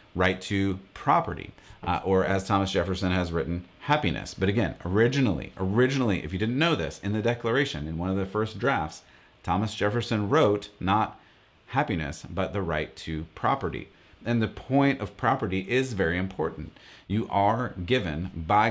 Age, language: 30-49, English